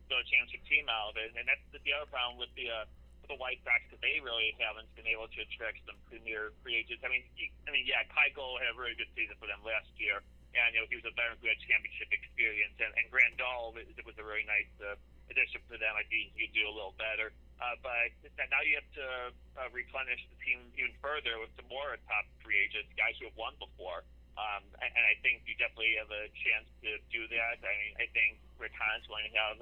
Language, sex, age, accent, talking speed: English, male, 30-49, American, 235 wpm